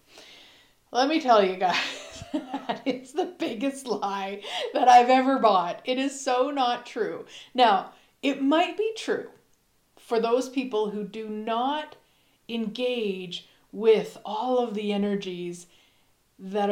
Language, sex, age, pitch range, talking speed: English, female, 40-59, 205-265 Hz, 130 wpm